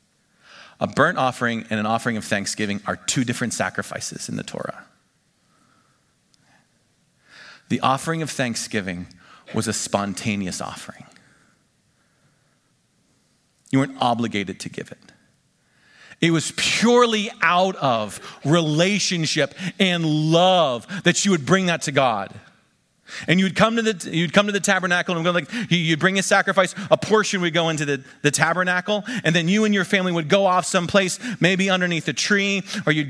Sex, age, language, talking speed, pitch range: male, 40-59, English, 150 wpm, 125-185 Hz